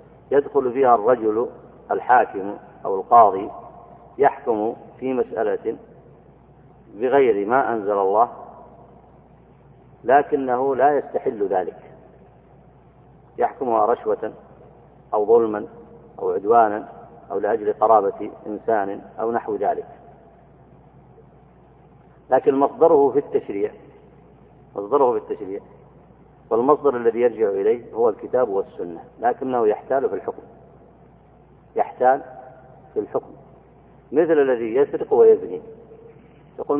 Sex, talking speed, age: male, 90 wpm, 50-69